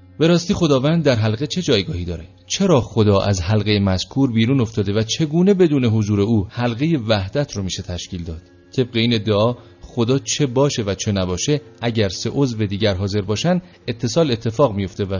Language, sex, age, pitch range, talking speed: Persian, male, 40-59, 100-135 Hz, 175 wpm